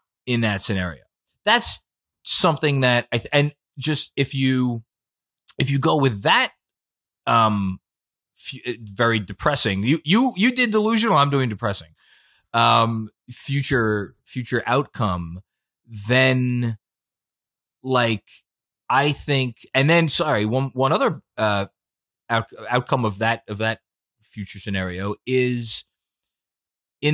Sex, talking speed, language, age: male, 120 wpm, English, 20-39